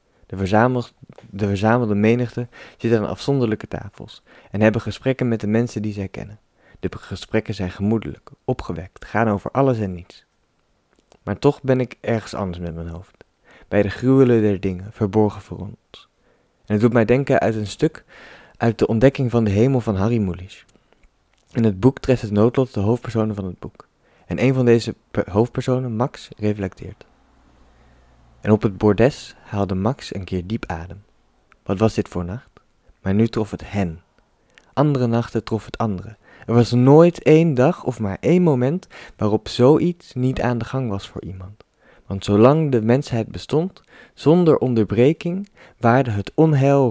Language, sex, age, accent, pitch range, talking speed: Dutch, male, 20-39, Dutch, 100-125 Hz, 170 wpm